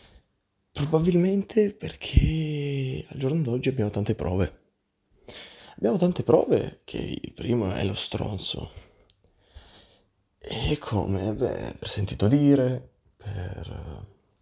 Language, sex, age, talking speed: Italian, male, 20-39, 100 wpm